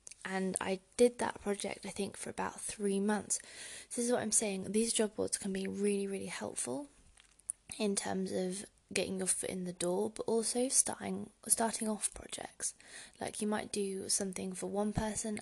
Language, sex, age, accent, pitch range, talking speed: English, female, 20-39, British, 190-220 Hz, 185 wpm